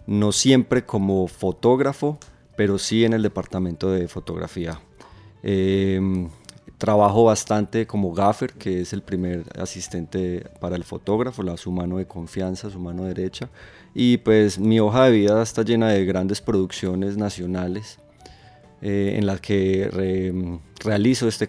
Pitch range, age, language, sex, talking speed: 90-110 Hz, 30-49, Spanish, male, 140 wpm